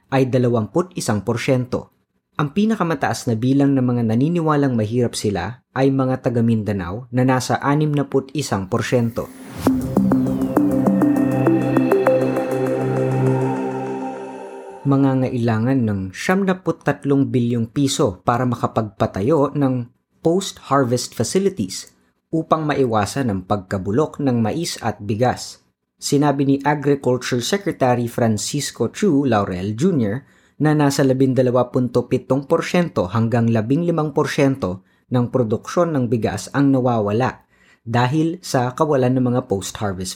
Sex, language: female, Filipino